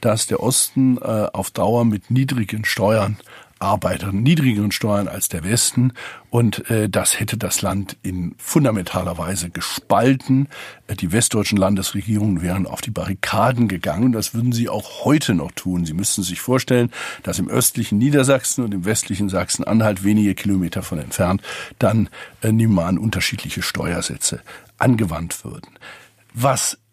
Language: German